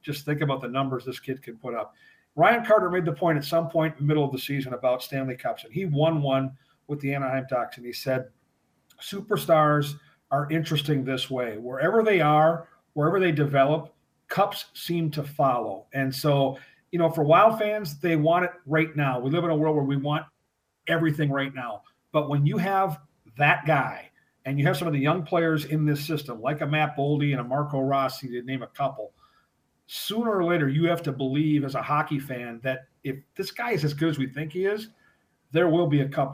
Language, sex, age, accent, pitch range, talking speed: English, male, 40-59, American, 135-165 Hz, 220 wpm